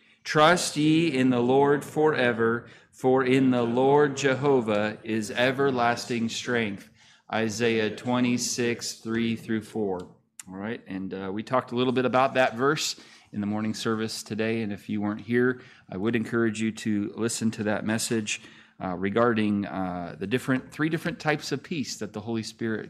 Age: 30-49